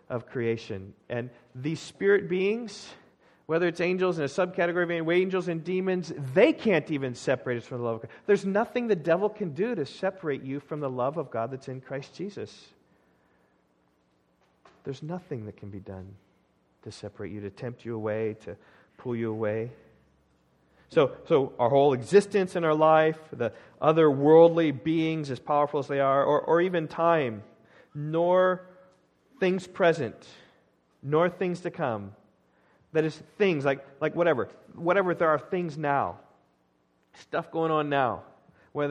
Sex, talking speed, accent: male, 160 wpm, American